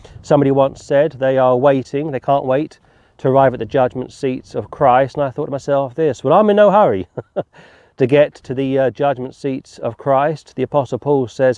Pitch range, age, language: 120-140 Hz, 40-59, English